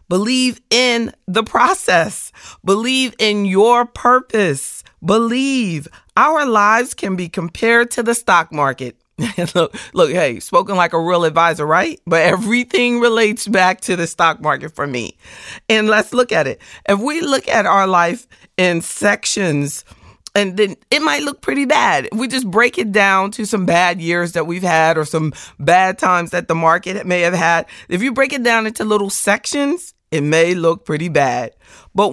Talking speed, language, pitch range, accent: 175 wpm, English, 175-245 Hz, American